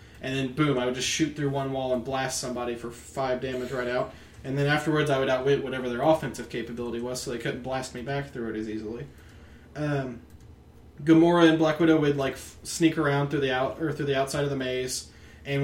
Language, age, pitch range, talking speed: English, 20-39, 125-155 Hz, 230 wpm